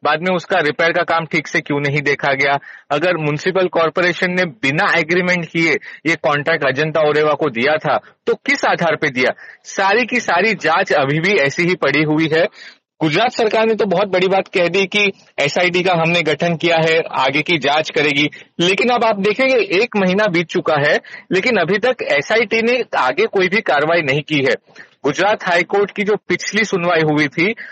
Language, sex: Hindi, male